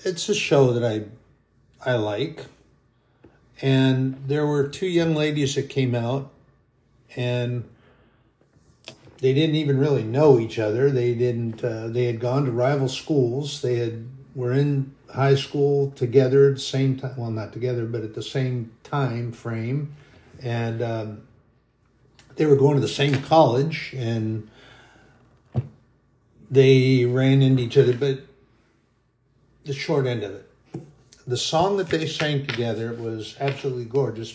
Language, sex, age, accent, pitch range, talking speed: English, male, 60-79, American, 120-140 Hz, 145 wpm